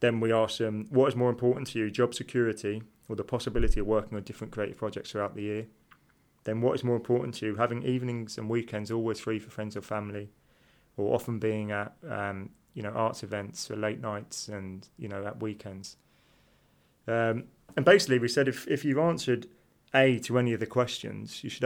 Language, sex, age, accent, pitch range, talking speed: English, male, 30-49, British, 100-120 Hz, 210 wpm